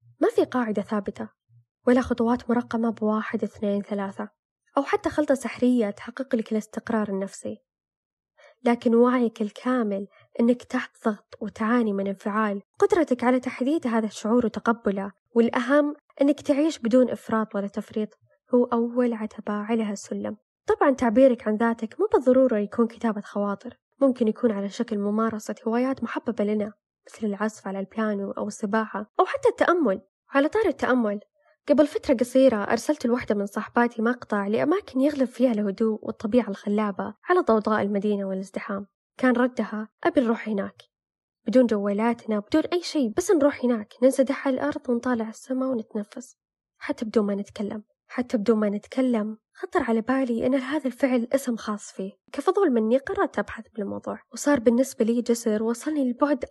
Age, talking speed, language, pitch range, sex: 10-29, 150 wpm, Arabic, 215-270 Hz, female